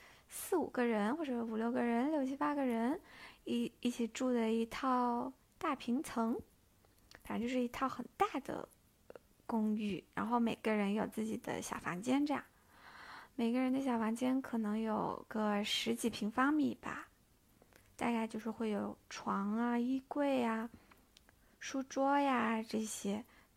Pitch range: 220-265 Hz